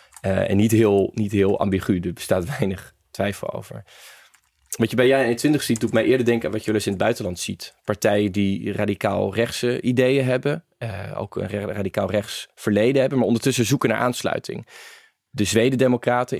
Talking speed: 195 wpm